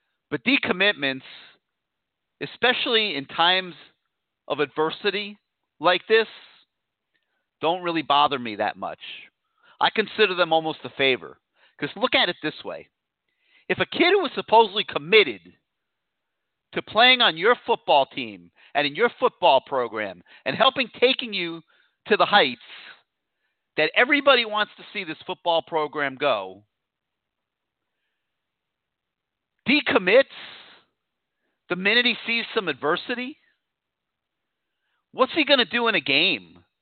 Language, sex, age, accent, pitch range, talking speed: English, male, 40-59, American, 145-230 Hz, 125 wpm